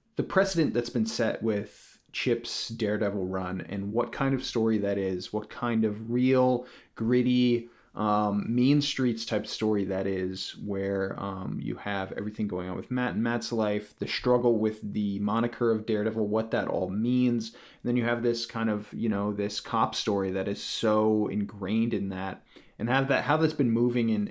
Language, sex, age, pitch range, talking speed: English, male, 30-49, 105-120 Hz, 190 wpm